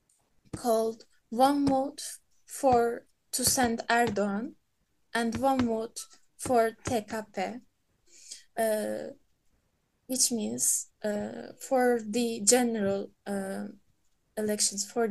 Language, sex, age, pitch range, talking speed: English, female, 20-39, 220-255 Hz, 85 wpm